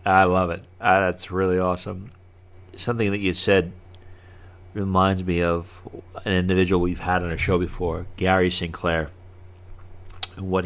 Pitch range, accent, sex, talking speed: 85-95 Hz, American, male, 140 wpm